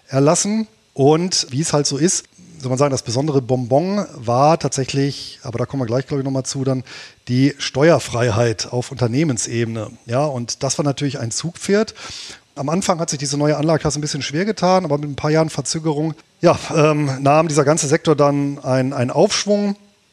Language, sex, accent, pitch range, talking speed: German, male, German, 130-155 Hz, 185 wpm